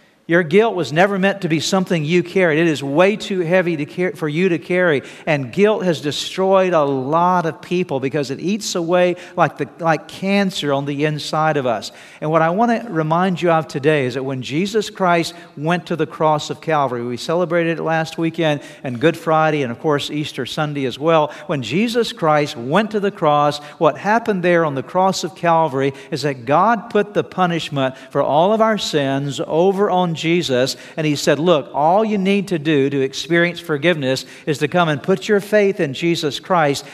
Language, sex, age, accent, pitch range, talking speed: English, male, 50-69, American, 145-185 Hz, 205 wpm